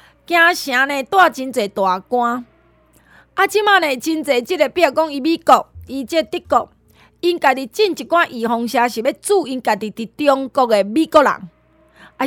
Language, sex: Chinese, female